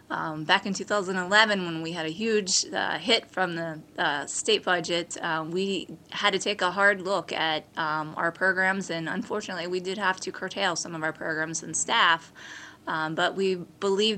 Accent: American